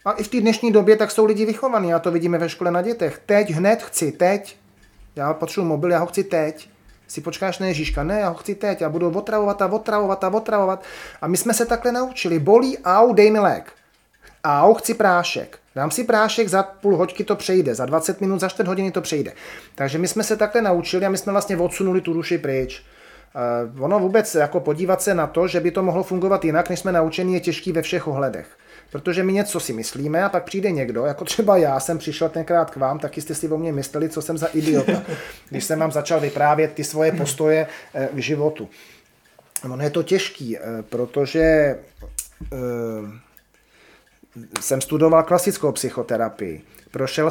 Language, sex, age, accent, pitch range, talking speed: Czech, male, 30-49, native, 150-195 Hz, 205 wpm